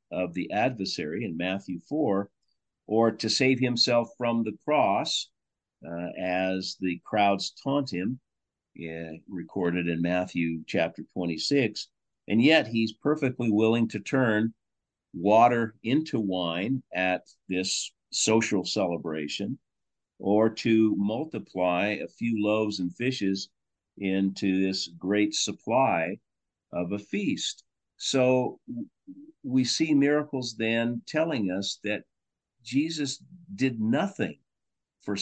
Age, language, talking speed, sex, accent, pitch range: 50-69, English, 110 wpm, male, American, 90-115 Hz